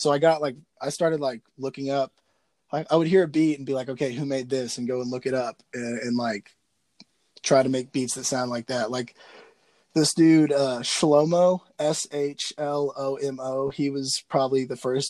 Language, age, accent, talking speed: English, 20-39, American, 200 wpm